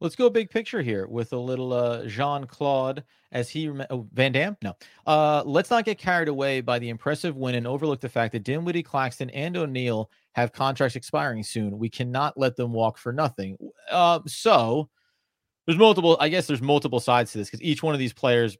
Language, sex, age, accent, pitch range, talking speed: English, male, 30-49, American, 115-150 Hz, 205 wpm